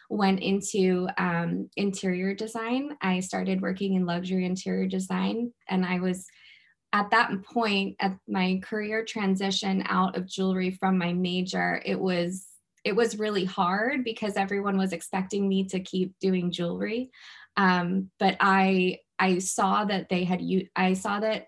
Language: English